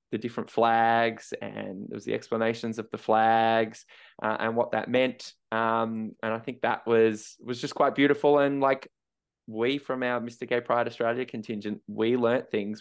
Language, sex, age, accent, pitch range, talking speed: English, male, 10-29, Australian, 110-130 Hz, 185 wpm